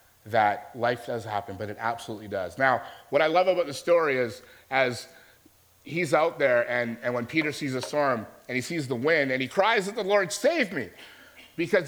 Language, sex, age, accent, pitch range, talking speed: English, male, 30-49, American, 125-180 Hz, 205 wpm